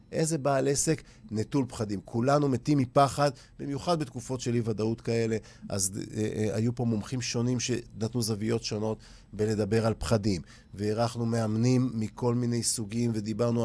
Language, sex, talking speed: Hebrew, male, 140 wpm